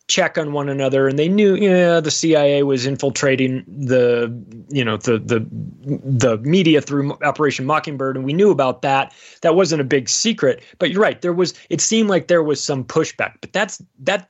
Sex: male